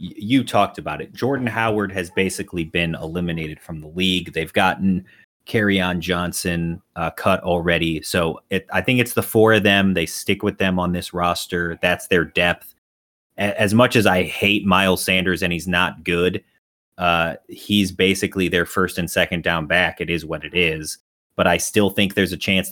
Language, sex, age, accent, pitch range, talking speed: English, male, 30-49, American, 90-105 Hz, 190 wpm